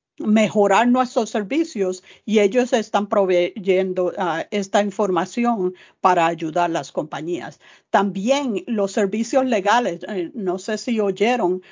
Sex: female